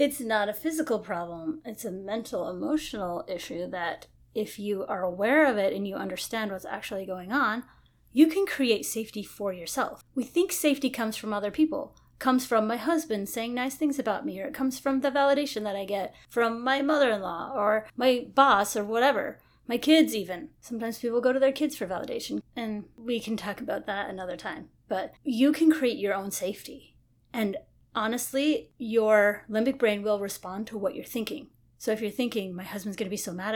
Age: 30-49